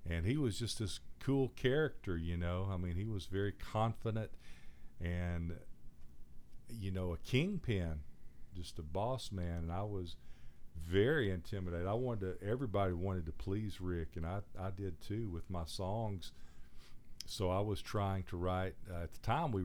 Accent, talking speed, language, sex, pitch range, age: American, 170 wpm, English, male, 85-110 Hz, 50-69